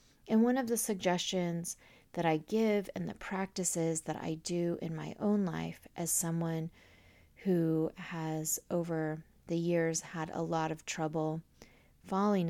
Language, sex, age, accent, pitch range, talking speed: English, female, 30-49, American, 165-210 Hz, 150 wpm